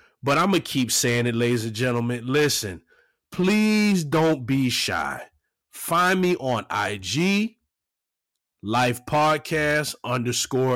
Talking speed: 115 wpm